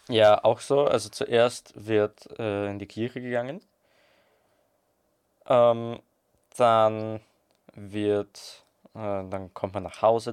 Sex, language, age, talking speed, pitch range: male, German, 20-39, 115 wpm, 95-110 Hz